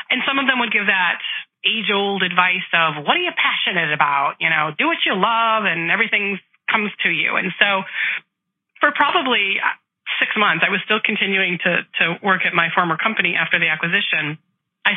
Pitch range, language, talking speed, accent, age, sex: 160-205 Hz, English, 190 wpm, American, 30-49, female